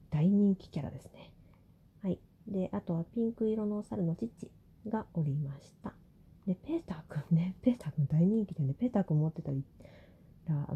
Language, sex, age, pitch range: Japanese, female, 40-59, 160-210 Hz